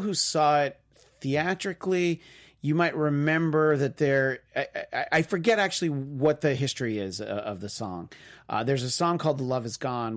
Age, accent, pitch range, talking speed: 30-49, American, 120-160 Hz, 175 wpm